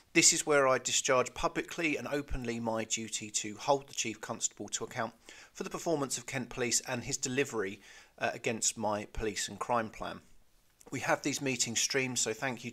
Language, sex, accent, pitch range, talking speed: English, male, British, 110-130 Hz, 195 wpm